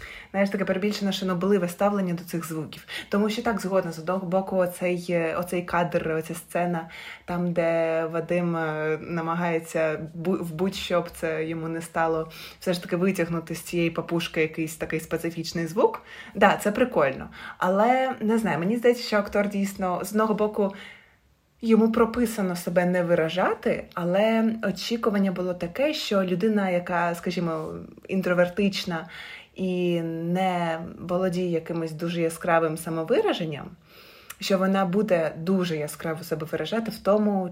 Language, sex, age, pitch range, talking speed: Ukrainian, female, 20-39, 165-195 Hz, 140 wpm